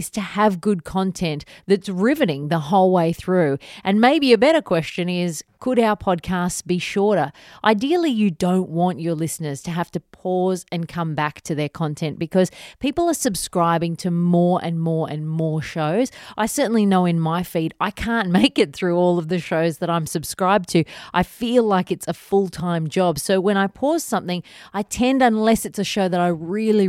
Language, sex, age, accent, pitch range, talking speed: English, female, 30-49, Australian, 170-215 Hz, 195 wpm